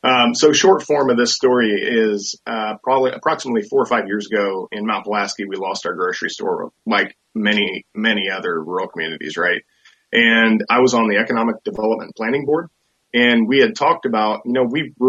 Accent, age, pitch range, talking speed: American, 30-49, 105-130 Hz, 190 wpm